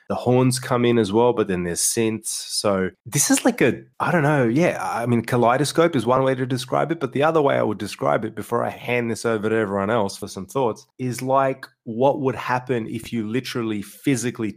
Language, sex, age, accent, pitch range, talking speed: English, male, 20-39, Australian, 100-120 Hz, 230 wpm